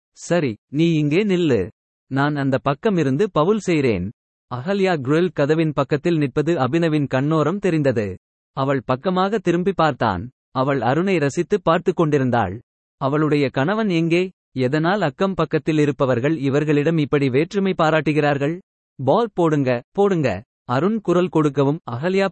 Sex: male